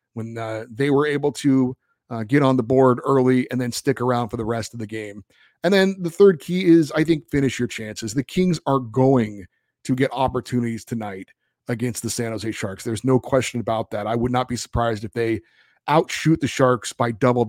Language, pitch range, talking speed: English, 115-155 Hz, 215 wpm